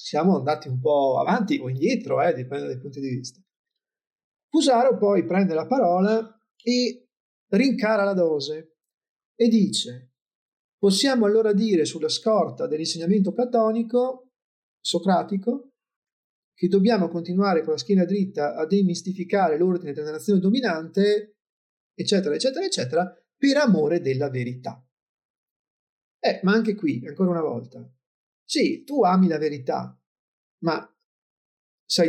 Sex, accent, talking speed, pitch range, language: male, native, 125 wpm, 160-225 Hz, Italian